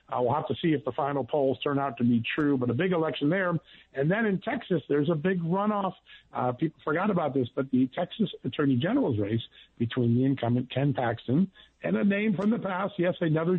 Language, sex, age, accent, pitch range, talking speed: English, male, 50-69, American, 120-155 Hz, 230 wpm